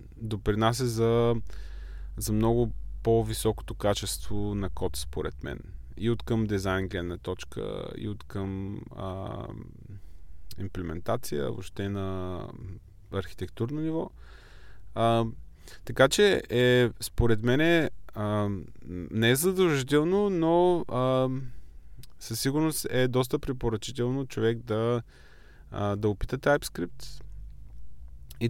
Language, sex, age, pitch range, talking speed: Bulgarian, male, 20-39, 95-125 Hz, 95 wpm